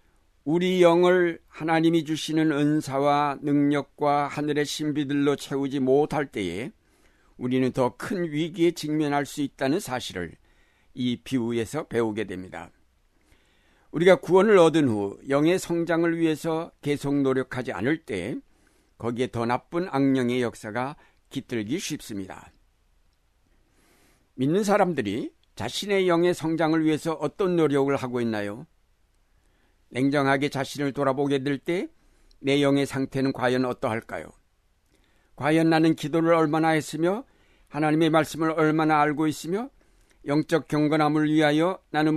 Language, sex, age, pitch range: Korean, male, 60-79, 125-160 Hz